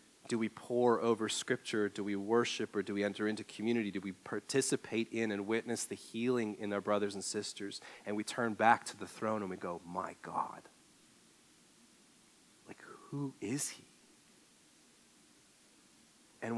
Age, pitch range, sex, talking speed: 30-49, 105-120 Hz, male, 160 wpm